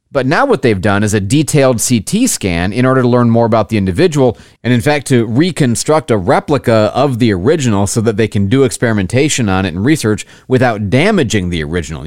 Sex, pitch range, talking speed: male, 100-135 Hz, 210 wpm